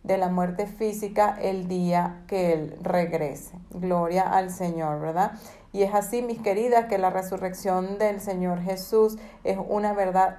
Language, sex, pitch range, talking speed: Spanish, female, 185-215 Hz, 155 wpm